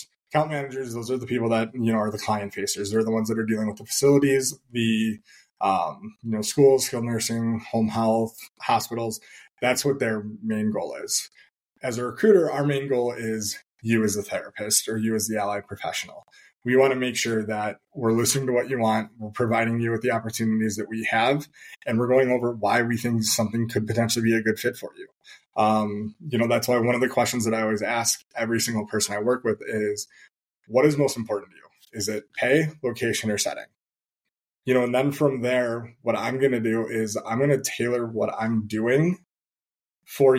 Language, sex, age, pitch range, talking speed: English, male, 20-39, 110-130 Hz, 210 wpm